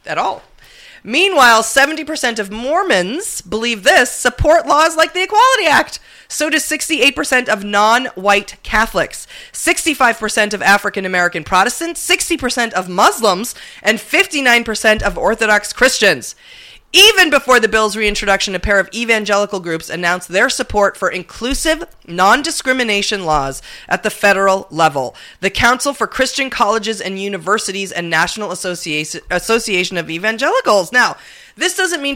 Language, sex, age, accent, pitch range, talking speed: English, female, 30-49, American, 180-250 Hz, 130 wpm